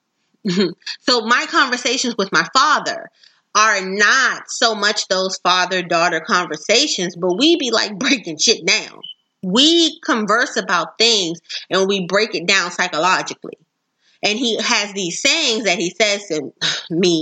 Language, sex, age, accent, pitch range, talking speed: English, female, 30-49, American, 185-245 Hz, 140 wpm